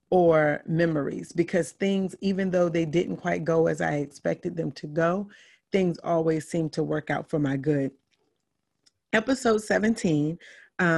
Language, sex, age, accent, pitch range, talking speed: English, female, 30-49, American, 160-195 Hz, 150 wpm